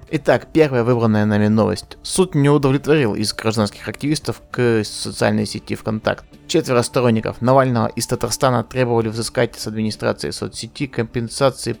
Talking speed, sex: 130 wpm, male